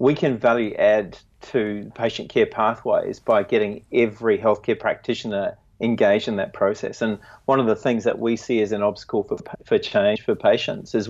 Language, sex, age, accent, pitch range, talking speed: English, male, 30-49, Australian, 105-125 Hz, 185 wpm